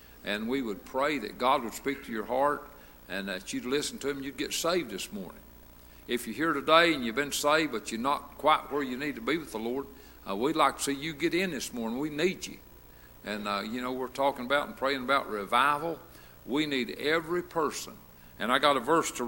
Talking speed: 240 wpm